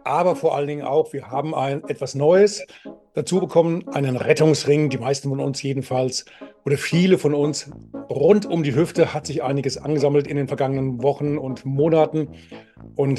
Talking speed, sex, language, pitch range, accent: 175 wpm, male, German, 135-155 Hz, German